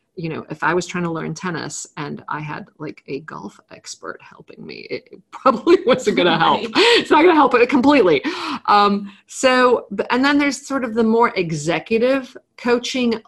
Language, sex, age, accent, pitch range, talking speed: English, female, 40-59, American, 160-230 Hz, 190 wpm